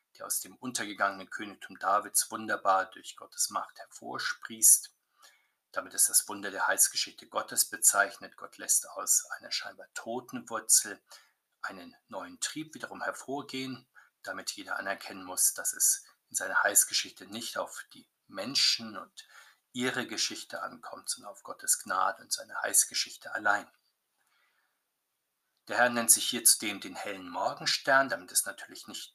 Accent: German